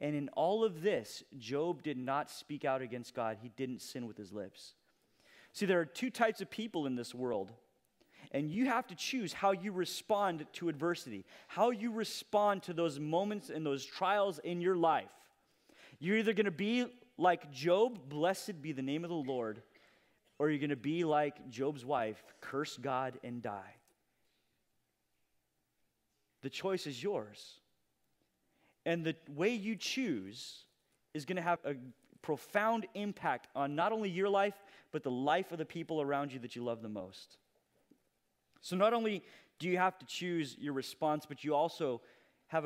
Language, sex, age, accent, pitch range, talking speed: English, male, 30-49, American, 135-200 Hz, 175 wpm